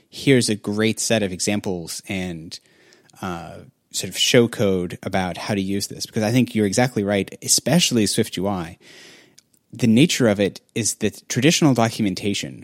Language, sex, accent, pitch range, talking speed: English, male, American, 100-125 Hz, 155 wpm